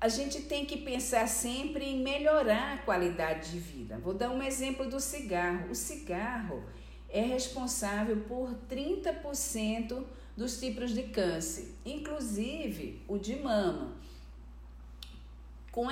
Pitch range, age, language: 180-255 Hz, 50-69, English